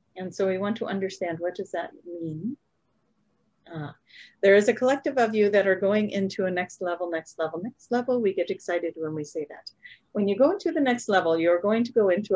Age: 40-59